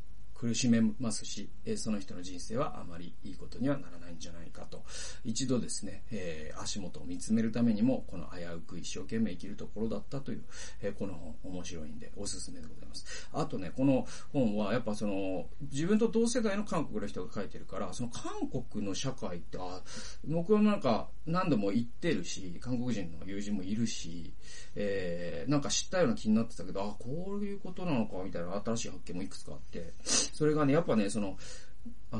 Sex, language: male, Japanese